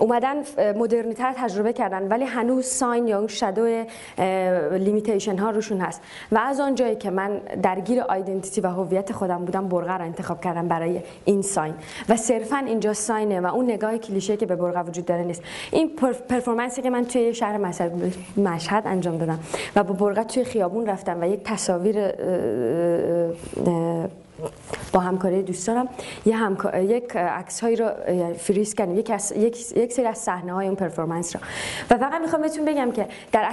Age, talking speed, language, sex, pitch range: 20-39, 160 wpm, Persian, female, 185-235 Hz